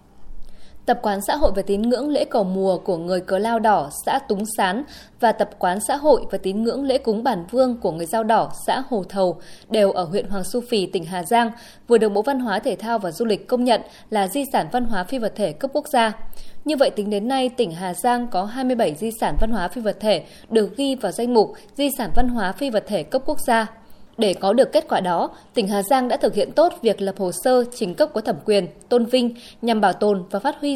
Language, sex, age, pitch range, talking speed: Vietnamese, female, 20-39, 200-255 Hz, 255 wpm